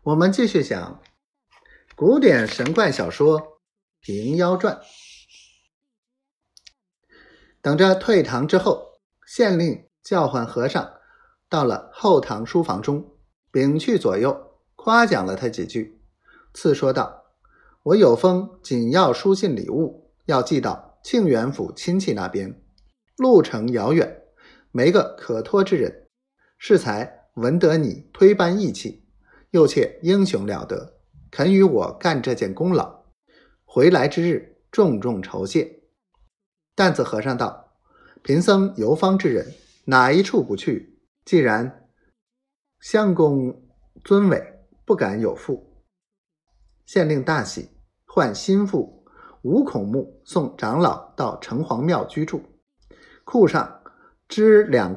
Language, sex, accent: Chinese, male, native